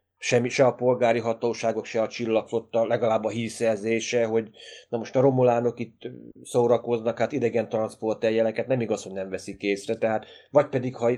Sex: male